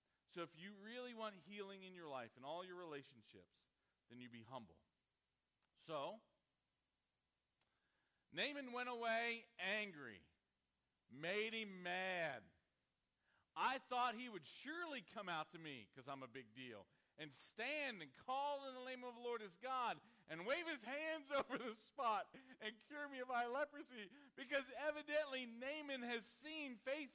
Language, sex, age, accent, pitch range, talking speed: English, male, 40-59, American, 195-285 Hz, 155 wpm